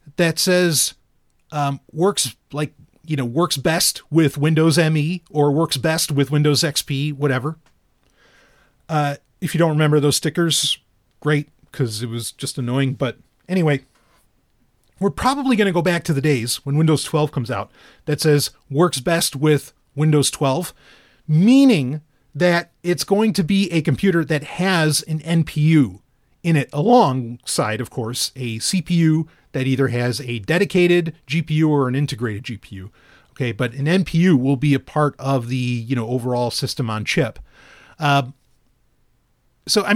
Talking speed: 155 wpm